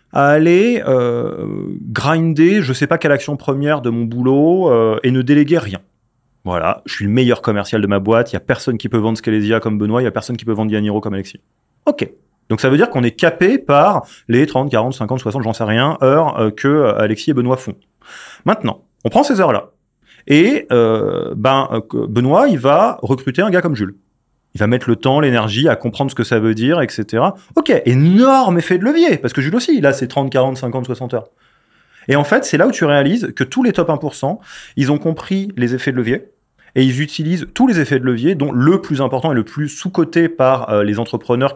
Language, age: French, 30-49